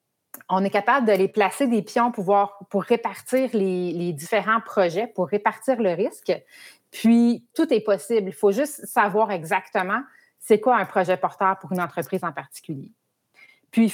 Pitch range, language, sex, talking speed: 185-230 Hz, French, female, 170 wpm